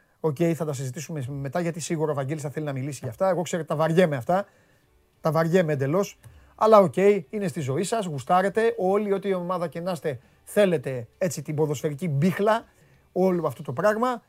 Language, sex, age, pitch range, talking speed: Greek, male, 30-49, 140-190 Hz, 200 wpm